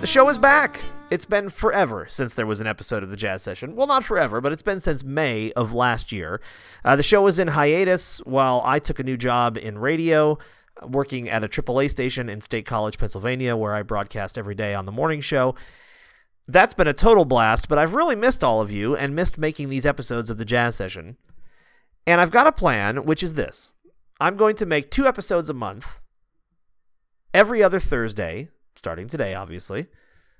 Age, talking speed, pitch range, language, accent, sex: 30-49, 200 wpm, 120-180 Hz, English, American, male